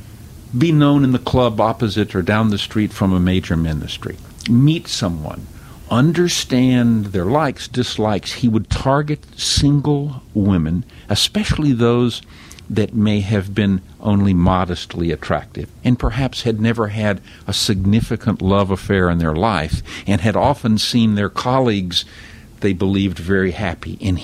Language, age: English, 60-79